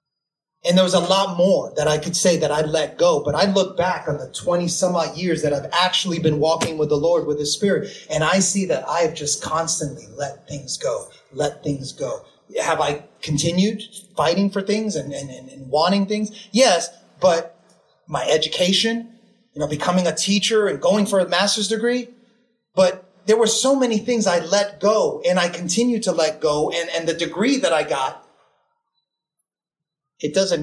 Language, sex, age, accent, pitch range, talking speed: English, male, 30-49, American, 165-215 Hz, 195 wpm